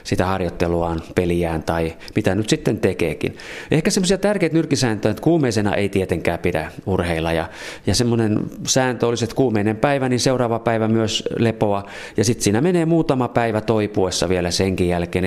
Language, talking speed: Finnish, 160 wpm